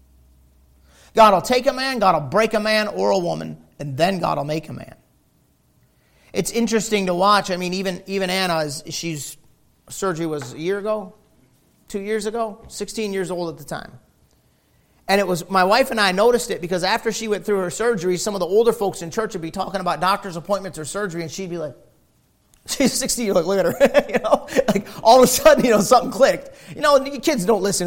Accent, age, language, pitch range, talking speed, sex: American, 40-59, English, 160-215 Hz, 215 wpm, male